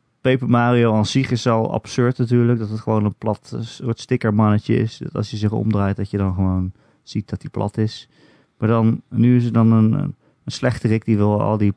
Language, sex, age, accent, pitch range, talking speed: Dutch, male, 30-49, Dutch, 100-125 Hz, 220 wpm